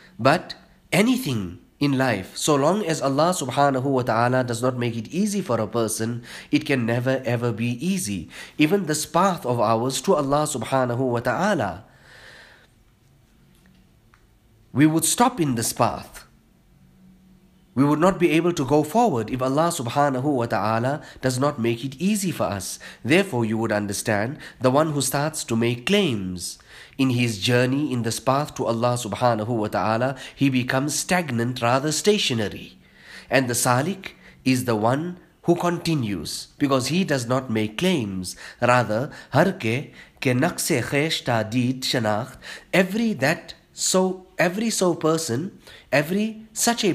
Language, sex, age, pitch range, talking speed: English, male, 30-49, 115-160 Hz, 145 wpm